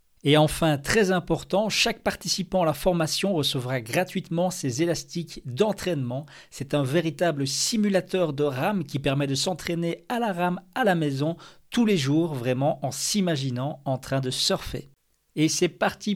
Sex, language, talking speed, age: male, French, 160 wpm, 40-59